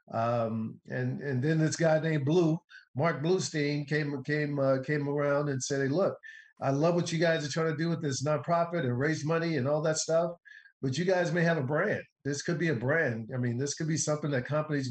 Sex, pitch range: male, 130-155 Hz